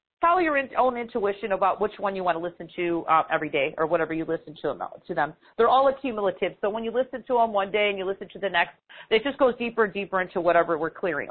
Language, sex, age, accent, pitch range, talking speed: English, female, 40-59, American, 190-240 Hz, 260 wpm